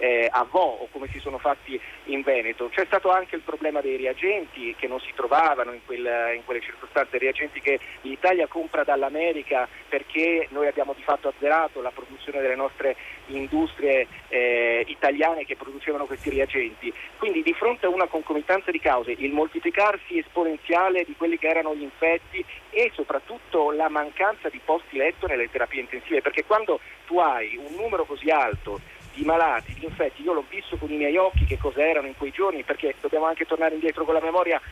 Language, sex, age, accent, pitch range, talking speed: Italian, male, 40-59, native, 140-185 Hz, 185 wpm